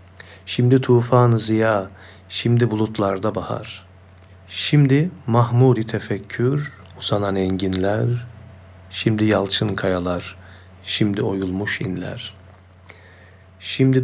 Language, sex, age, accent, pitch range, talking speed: Turkish, male, 50-69, native, 95-115 Hz, 75 wpm